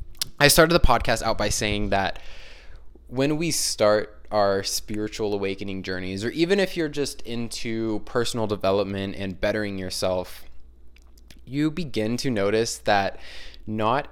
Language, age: English, 20-39